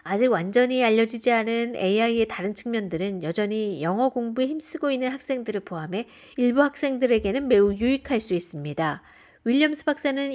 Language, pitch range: Korean, 185-255 Hz